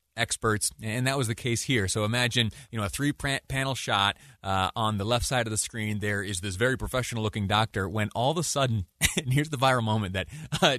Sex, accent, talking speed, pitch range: male, American, 235 wpm, 110-150 Hz